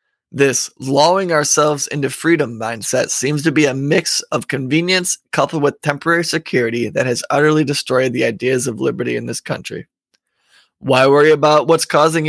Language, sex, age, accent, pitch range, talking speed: English, male, 20-39, American, 135-160 Hz, 160 wpm